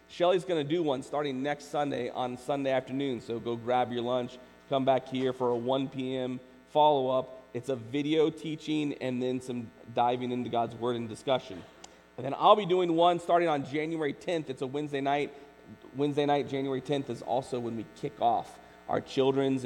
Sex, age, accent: male, 40-59, American